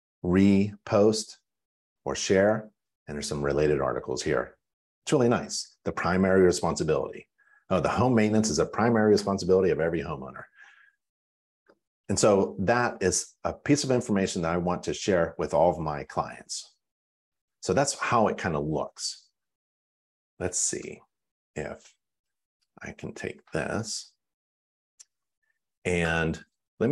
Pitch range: 80-110 Hz